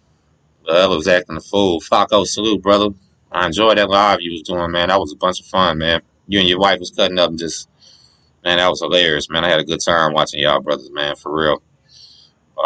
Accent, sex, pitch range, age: American, male, 85-105 Hz, 20-39